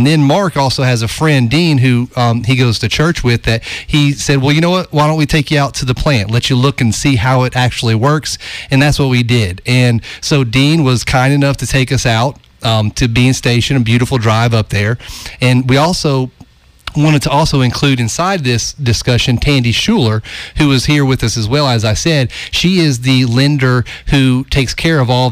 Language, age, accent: English, 30-49, American